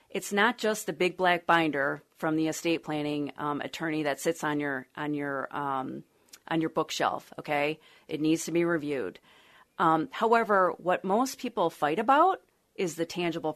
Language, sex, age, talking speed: English, female, 40-59, 175 wpm